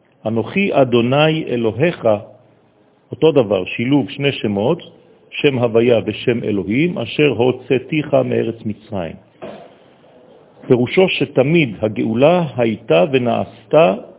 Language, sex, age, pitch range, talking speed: French, male, 50-69, 110-140 Hz, 90 wpm